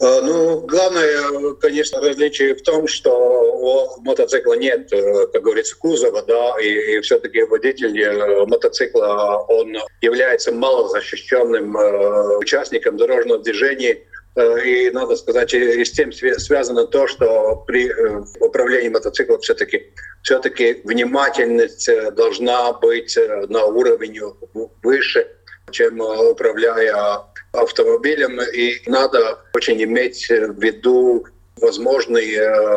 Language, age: Russian, 50-69